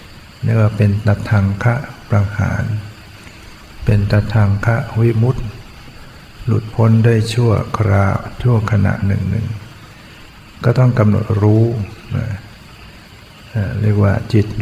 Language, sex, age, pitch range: Thai, male, 60-79, 100-110 Hz